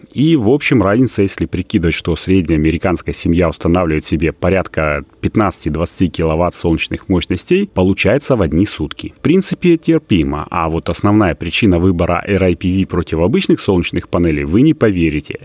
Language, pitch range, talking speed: Russian, 85-120 Hz, 145 wpm